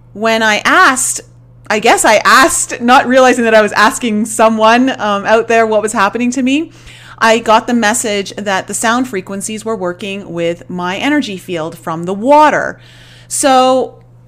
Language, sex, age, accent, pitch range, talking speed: English, female, 30-49, American, 185-240 Hz, 170 wpm